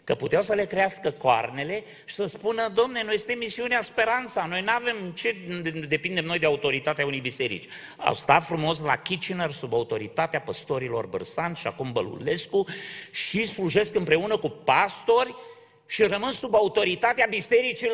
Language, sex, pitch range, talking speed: Romanian, male, 150-235 Hz, 155 wpm